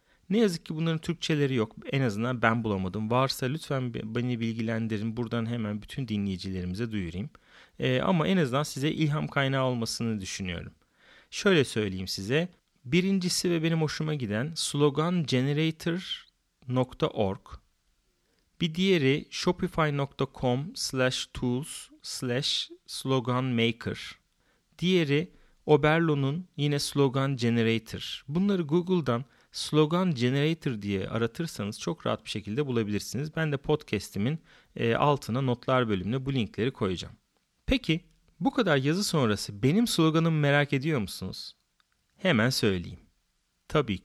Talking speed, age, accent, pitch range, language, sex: 110 wpm, 40-59, native, 115-160 Hz, Turkish, male